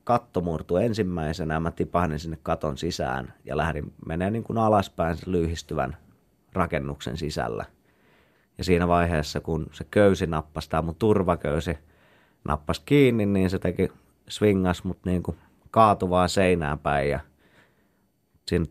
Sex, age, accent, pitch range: male, 30-49, native, 80-95 Hz